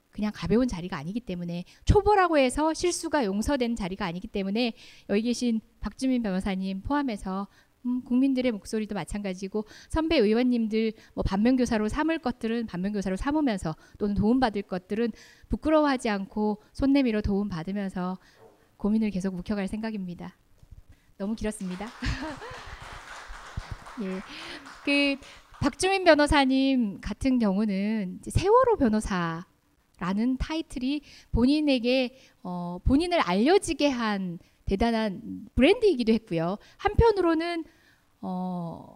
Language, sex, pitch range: Korean, female, 195-280 Hz